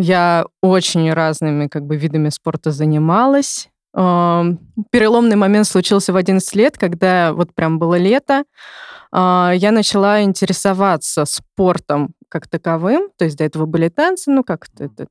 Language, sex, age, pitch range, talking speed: Russian, female, 20-39, 165-215 Hz, 135 wpm